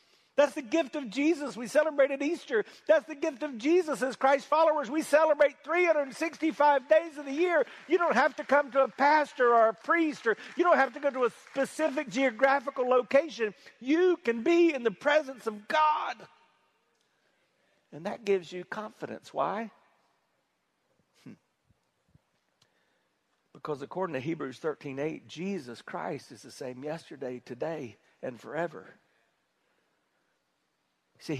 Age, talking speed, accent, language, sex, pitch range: 50-69, 140 wpm, American, English, male, 230-300 Hz